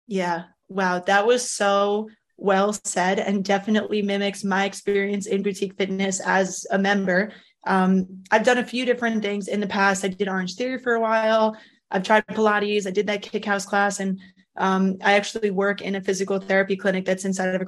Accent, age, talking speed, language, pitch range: American, 20-39, 195 wpm, English, 190-215 Hz